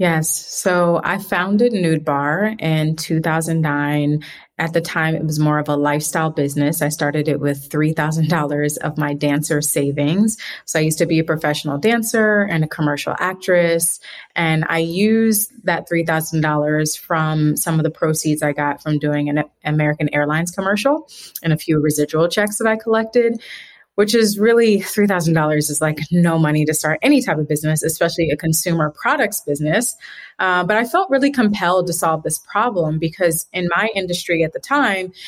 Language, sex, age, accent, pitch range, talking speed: English, female, 30-49, American, 155-185 Hz, 170 wpm